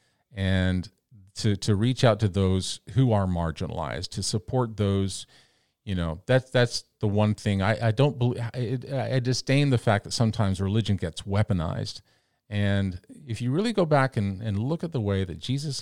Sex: male